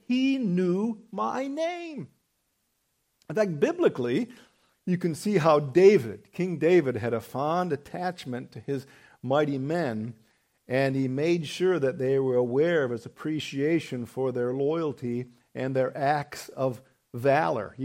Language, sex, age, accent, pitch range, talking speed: English, male, 50-69, American, 135-170 Hz, 140 wpm